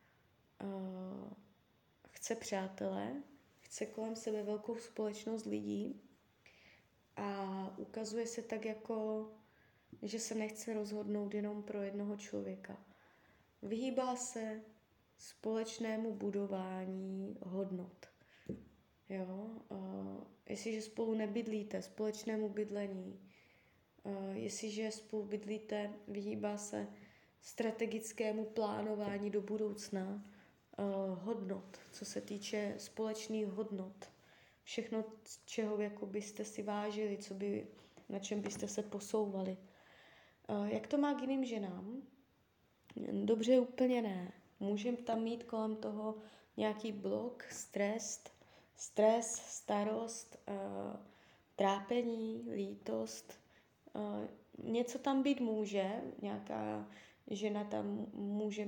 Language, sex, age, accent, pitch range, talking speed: Czech, female, 20-39, native, 195-220 Hz, 85 wpm